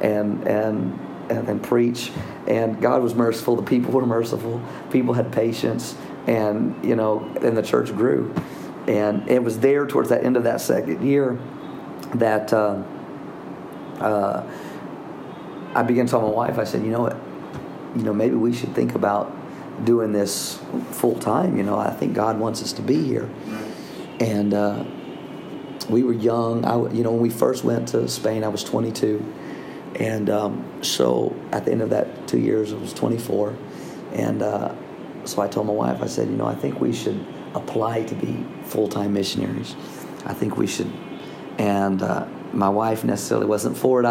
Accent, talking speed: American, 175 wpm